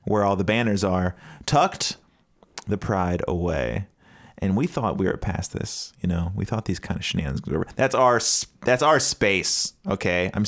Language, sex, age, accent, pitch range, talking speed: English, male, 30-49, American, 90-115 Hz, 190 wpm